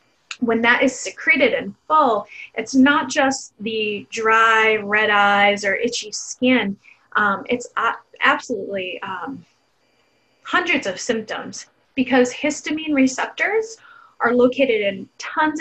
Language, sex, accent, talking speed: English, female, American, 115 wpm